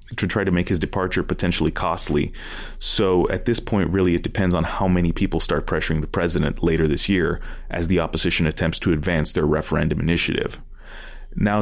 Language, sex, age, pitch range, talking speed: English, male, 30-49, 85-100 Hz, 185 wpm